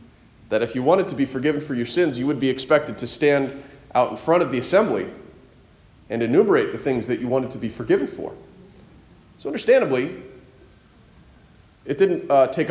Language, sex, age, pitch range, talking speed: English, male, 30-49, 110-150 Hz, 185 wpm